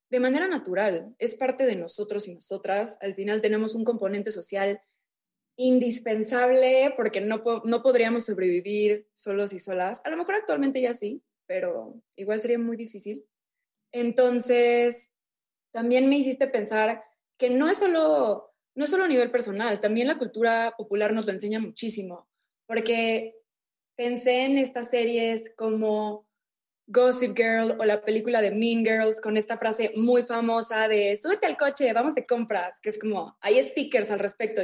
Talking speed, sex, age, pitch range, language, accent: 160 wpm, female, 20-39, 210-255 Hz, Spanish, Mexican